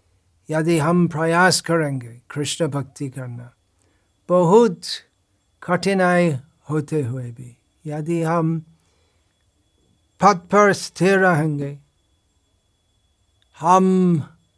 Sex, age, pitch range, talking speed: male, 60-79, 95-160 Hz, 80 wpm